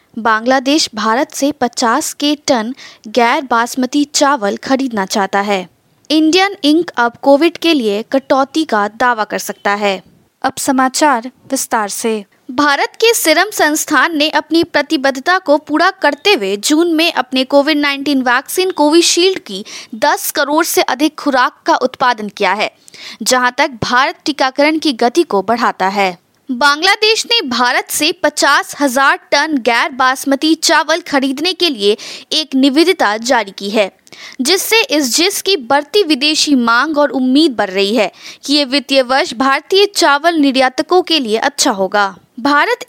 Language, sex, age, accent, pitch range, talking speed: Hindi, female, 20-39, native, 245-320 Hz, 150 wpm